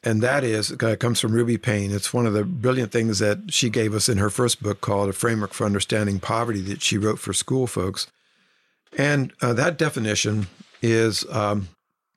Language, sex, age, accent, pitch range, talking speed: English, male, 60-79, American, 105-125 Hz, 195 wpm